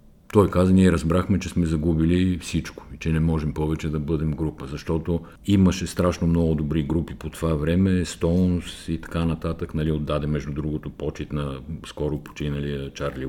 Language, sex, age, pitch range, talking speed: Bulgarian, male, 50-69, 75-90 Hz, 170 wpm